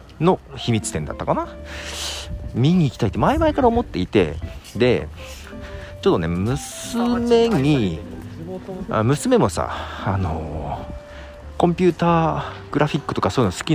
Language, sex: Japanese, male